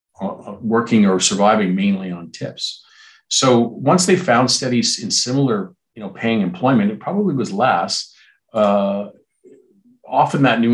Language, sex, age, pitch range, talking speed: English, male, 40-59, 90-125 Hz, 140 wpm